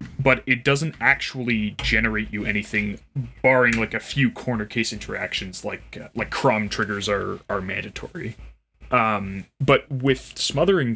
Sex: male